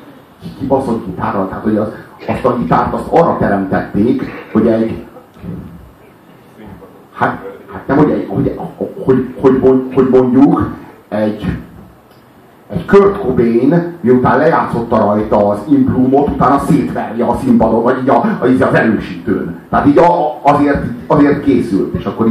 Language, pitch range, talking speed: Hungarian, 115-170 Hz, 125 wpm